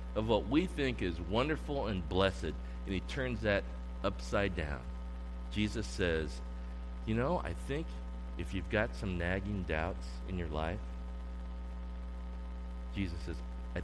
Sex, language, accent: male, English, American